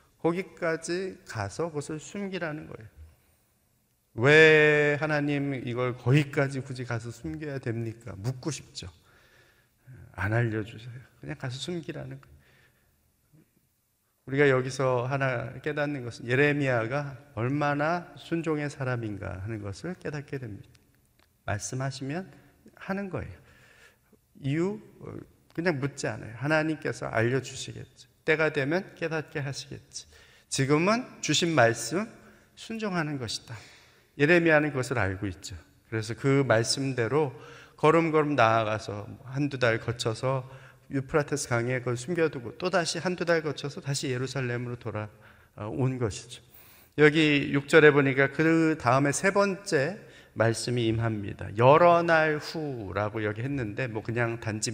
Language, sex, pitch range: Korean, male, 115-150 Hz